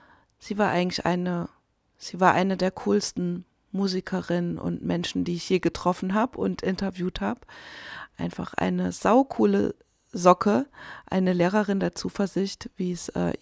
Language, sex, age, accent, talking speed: German, female, 30-49, German, 140 wpm